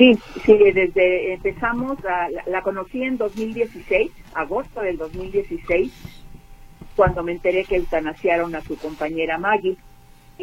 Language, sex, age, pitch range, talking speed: Spanish, female, 50-69, 150-185 Hz, 125 wpm